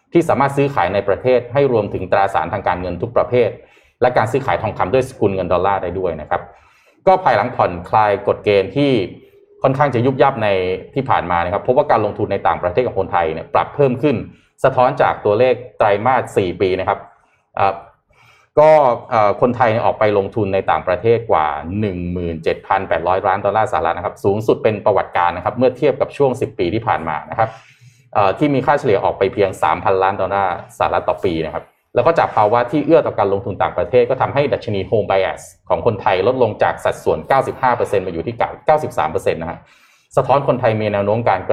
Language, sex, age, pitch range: Thai, male, 20-39, 100-135 Hz